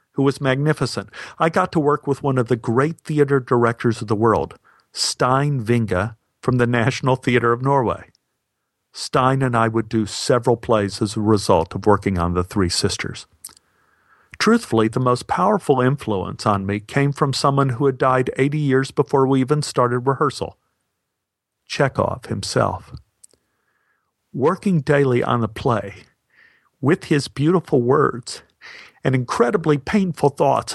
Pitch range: 120-150 Hz